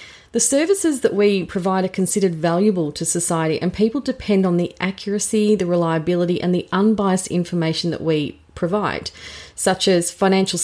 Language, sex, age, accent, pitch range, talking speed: English, female, 30-49, Australian, 165-205 Hz, 160 wpm